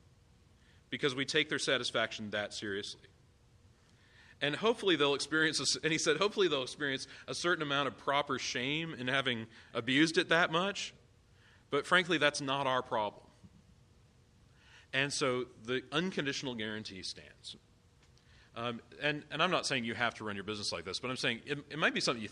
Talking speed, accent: 170 wpm, American